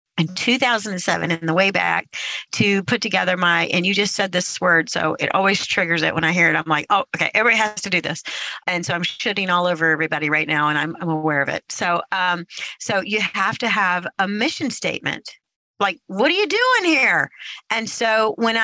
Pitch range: 180-245 Hz